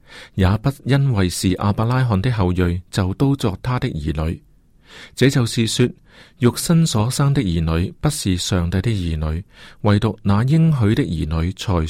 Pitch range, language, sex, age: 95-135 Hz, Chinese, male, 40-59